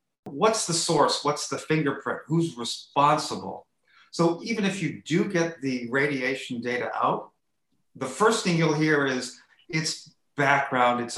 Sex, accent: male, American